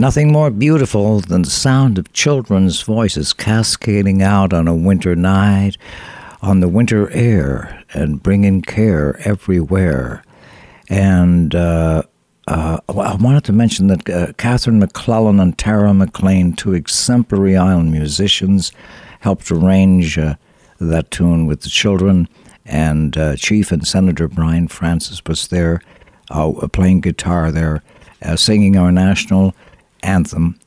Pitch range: 85-100 Hz